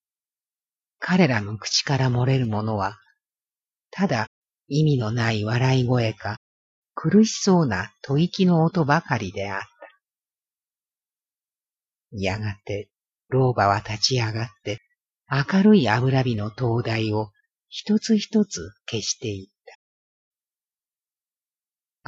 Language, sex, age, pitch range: Japanese, female, 50-69, 110-155 Hz